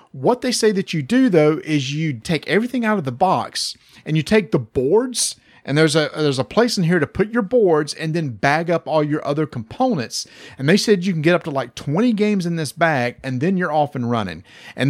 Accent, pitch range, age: American, 130-190 Hz, 40-59